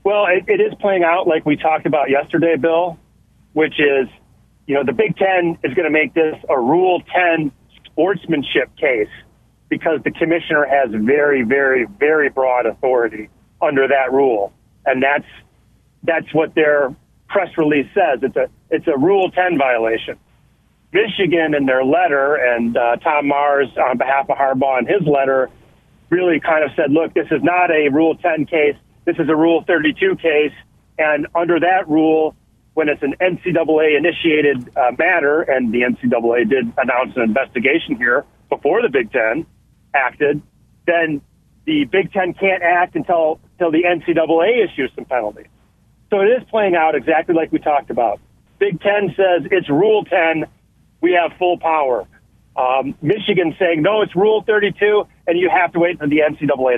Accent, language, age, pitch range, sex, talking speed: American, English, 40-59, 140-180 Hz, male, 170 wpm